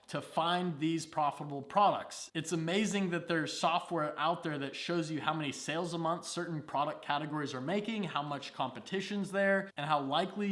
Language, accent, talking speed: English, American, 185 wpm